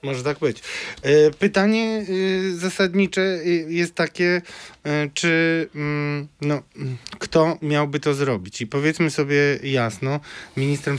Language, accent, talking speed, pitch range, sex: Polish, native, 100 wpm, 135-160 Hz, male